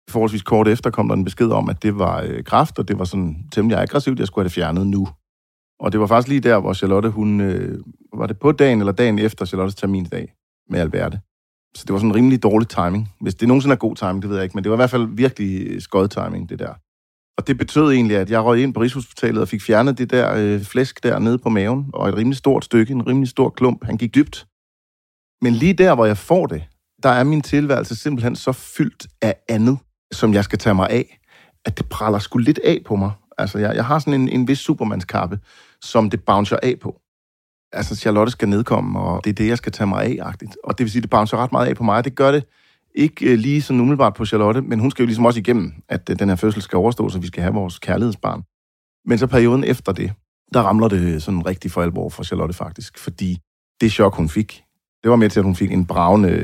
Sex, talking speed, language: male, 255 wpm, Danish